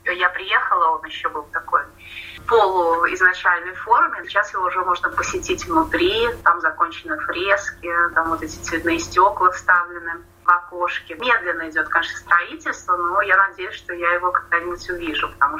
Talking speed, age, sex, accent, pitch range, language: 150 wpm, 20-39, female, native, 170-200 Hz, Russian